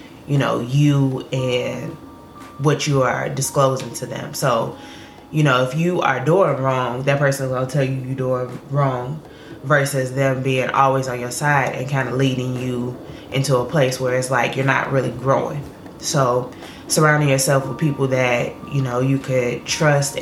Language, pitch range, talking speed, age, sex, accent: English, 135-175 Hz, 175 wpm, 20-39, female, American